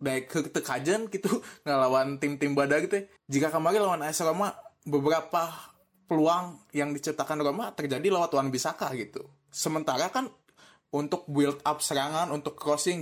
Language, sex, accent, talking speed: Indonesian, male, native, 140 wpm